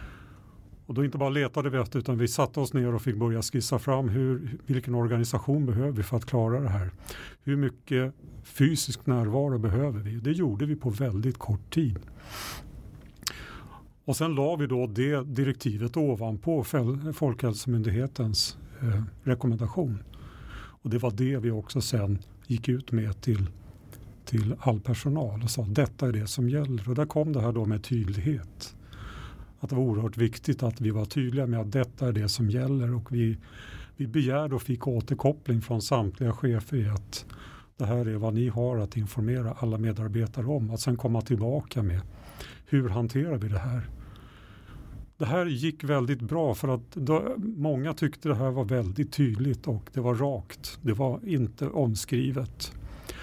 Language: Swedish